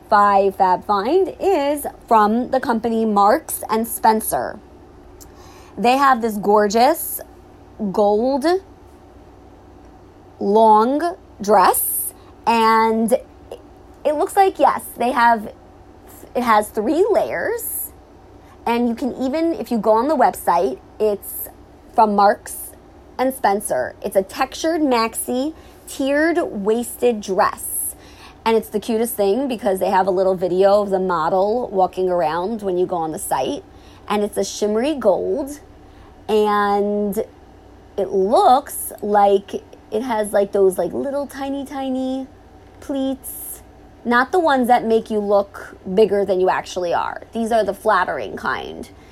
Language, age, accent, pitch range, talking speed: English, 30-49, American, 205-260 Hz, 130 wpm